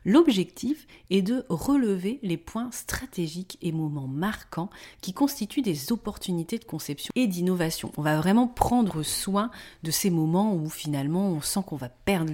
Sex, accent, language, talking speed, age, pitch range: female, French, French, 160 wpm, 30-49, 160-230 Hz